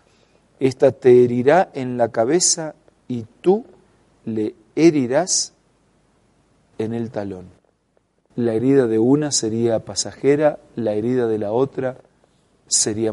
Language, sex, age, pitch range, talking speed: Spanish, male, 40-59, 115-140 Hz, 115 wpm